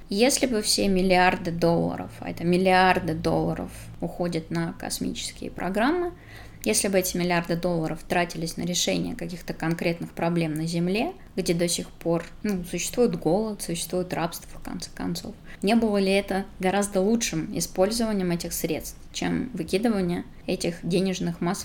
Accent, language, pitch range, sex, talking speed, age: native, Russian, 170-195 Hz, female, 145 wpm, 20-39